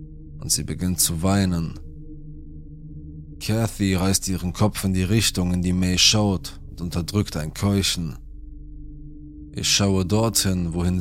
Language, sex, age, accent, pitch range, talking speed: German, male, 20-39, German, 75-100 Hz, 130 wpm